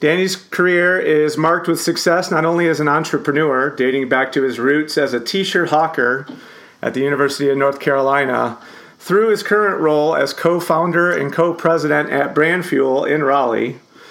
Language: English